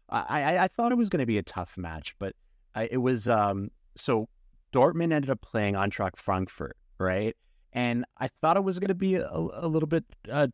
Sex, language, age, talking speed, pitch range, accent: male, English, 30-49, 215 wpm, 95-125 Hz, American